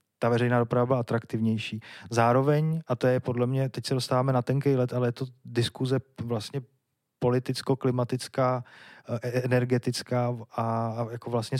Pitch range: 120-135 Hz